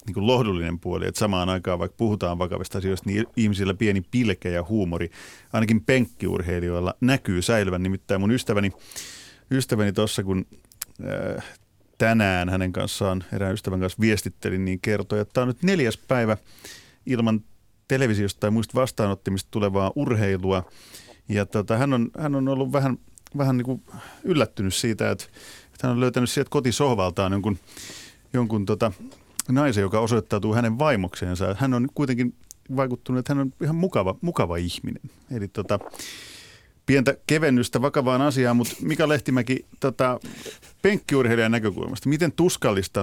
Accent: native